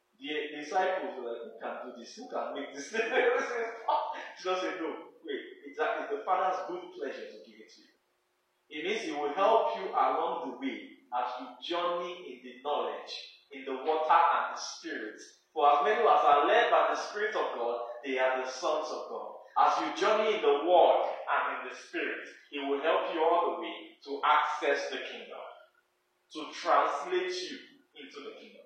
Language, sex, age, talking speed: English, male, 30-49, 195 wpm